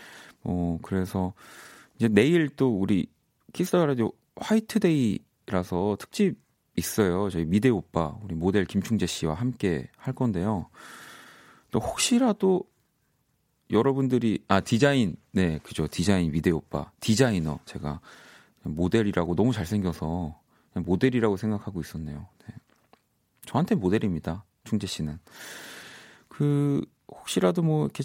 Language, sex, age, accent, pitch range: Korean, male, 30-49, native, 85-125 Hz